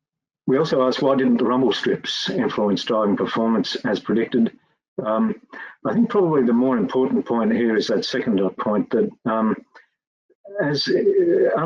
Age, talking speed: 50-69, 155 wpm